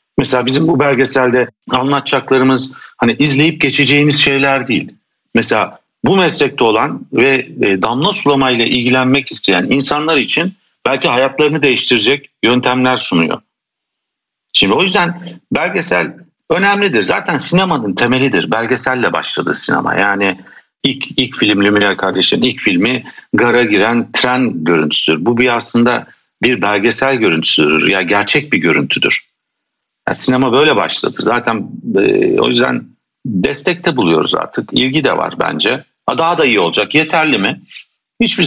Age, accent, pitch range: 60-79, native, 95-140 Hz